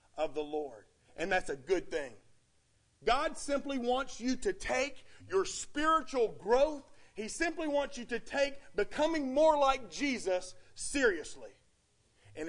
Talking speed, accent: 140 wpm, American